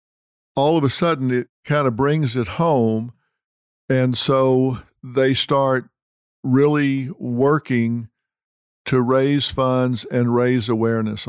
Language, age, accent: English, 50-69, American